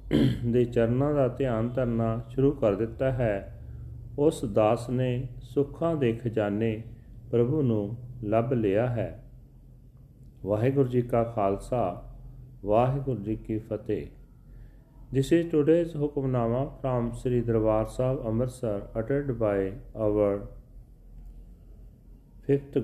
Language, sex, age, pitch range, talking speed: Punjabi, male, 40-59, 110-130 Hz, 110 wpm